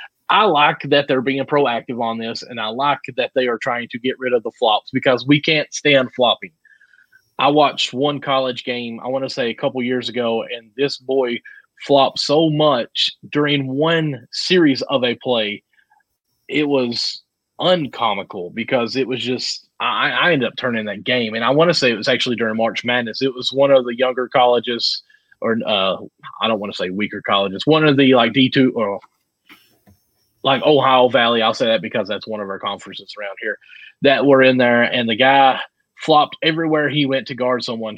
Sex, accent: male, American